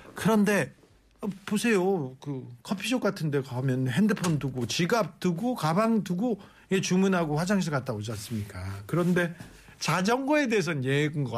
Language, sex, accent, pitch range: Korean, male, native, 130-185 Hz